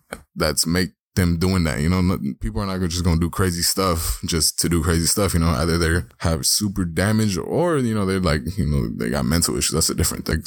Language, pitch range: English, 80-95 Hz